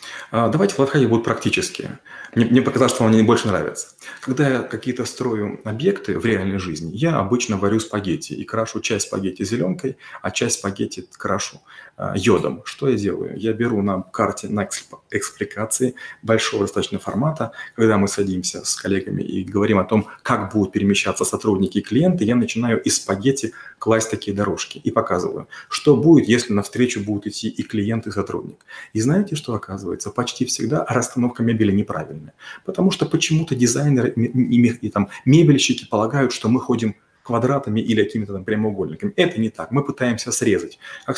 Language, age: Russian, 30-49